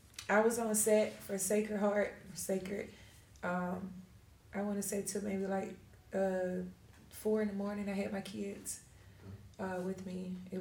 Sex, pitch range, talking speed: female, 165-200 Hz, 165 wpm